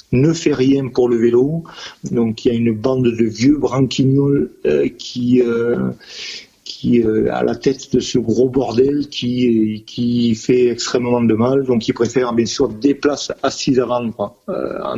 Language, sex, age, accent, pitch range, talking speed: French, male, 40-59, French, 115-130 Hz, 170 wpm